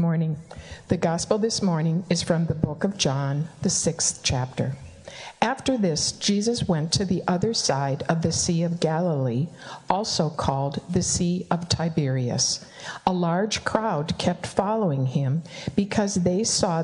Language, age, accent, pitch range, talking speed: English, 60-79, American, 150-190 Hz, 150 wpm